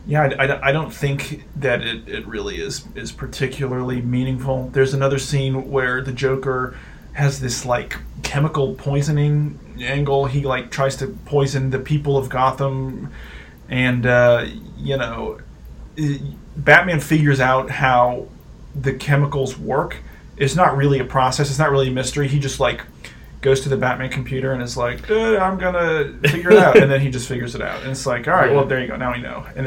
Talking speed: 185 wpm